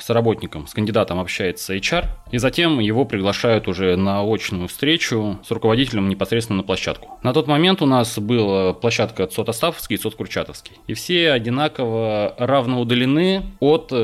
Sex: male